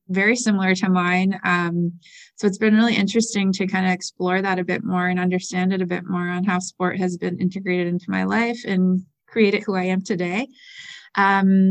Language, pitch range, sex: English, 180-195 Hz, female